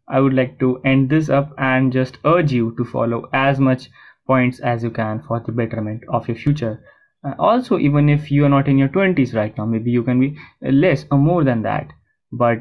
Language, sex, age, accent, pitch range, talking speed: English, male, 20-39, Indian, 115-145 Hz, 220 wpm